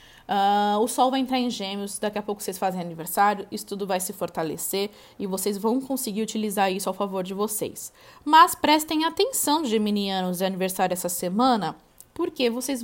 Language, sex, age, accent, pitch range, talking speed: Portuguese, female, 20-39, Brazilian, 185-240 Hz, 175 wpm